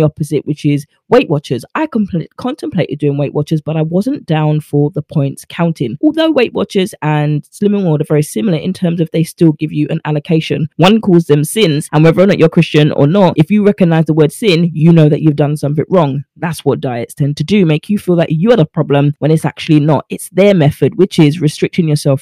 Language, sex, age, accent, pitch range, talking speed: English, female, 20-39, British, 150-180 Hz, 230 wpm